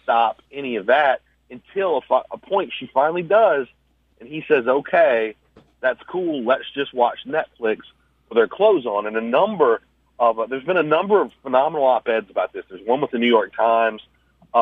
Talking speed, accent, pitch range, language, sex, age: 195 wpm, American, 115-140 Hz, English, male, 40-59